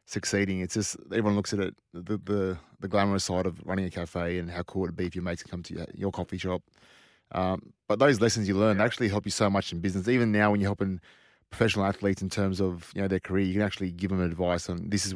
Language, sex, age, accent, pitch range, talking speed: English, male, 20-39, Australian, 95-105 Hz, 265 wpm